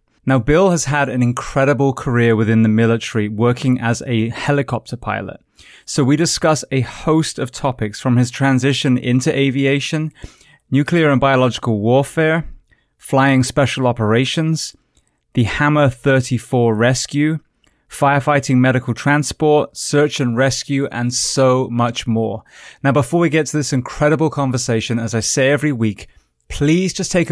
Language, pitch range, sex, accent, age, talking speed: English, 120-145 Hz, male, British, 20-39, 140 wpm